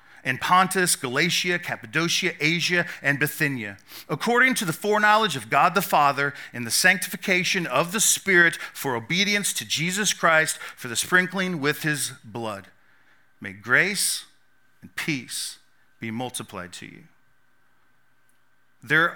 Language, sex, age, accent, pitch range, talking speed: English, male, 40-59, American, 145-185 Hz, 130 wpm